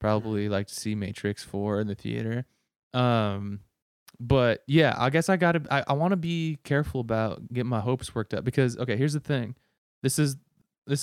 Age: 20-39